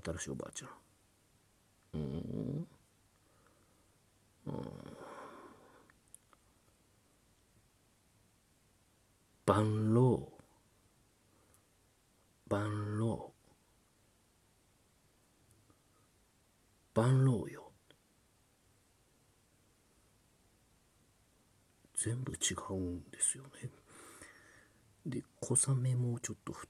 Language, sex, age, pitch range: Japanese, male, 50-69, 95-120 Hz